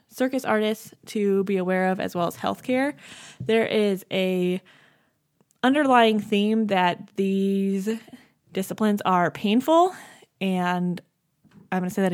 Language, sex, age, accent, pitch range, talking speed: English, female, 20-39, American, 175-210 Hz, 130 wpm